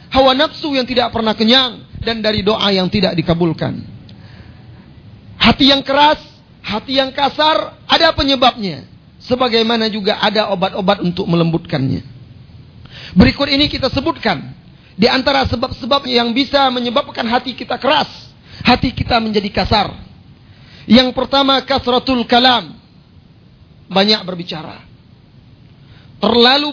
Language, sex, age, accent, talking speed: Indonesian, male, 40-59, native, 110 wpm